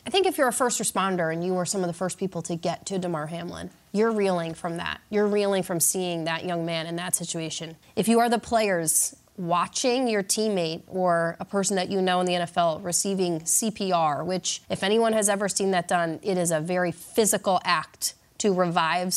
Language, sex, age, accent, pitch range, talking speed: English, female, 30-49, American, 175-220 Hz, 215 wpm